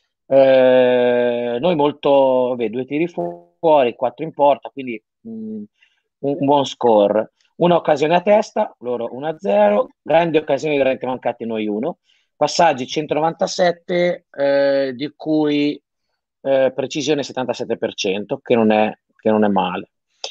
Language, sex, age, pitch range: Italian, male, 30-49, 120-170 Hz